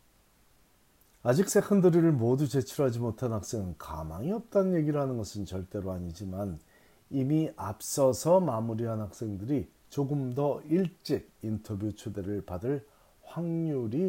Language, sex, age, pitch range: Korean, male, 40-59, 100-145 Hz